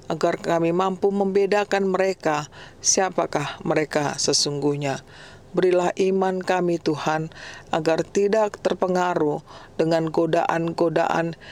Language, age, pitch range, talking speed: Indonesian, 40-59, 155-185 Hz, 90 wpm